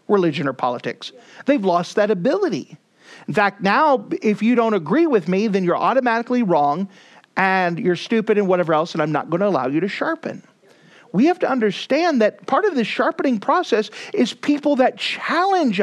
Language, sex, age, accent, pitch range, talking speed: English, male, 50-69, American, 175-240 Hz, 185 wpm